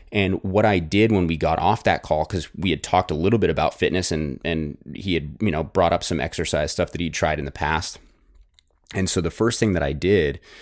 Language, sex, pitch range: English, male, 80-95 Hz